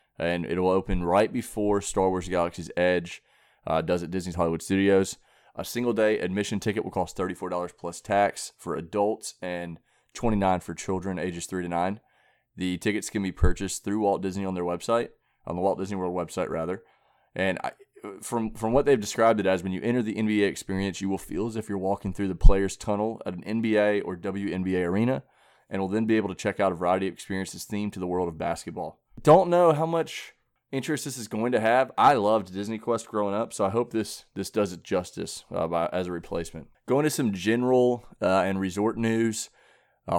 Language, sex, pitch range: English, male, 90-110 Hz